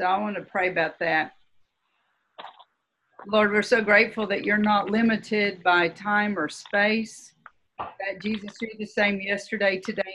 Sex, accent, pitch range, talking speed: female, American, 190-220 Hz, 155 wpm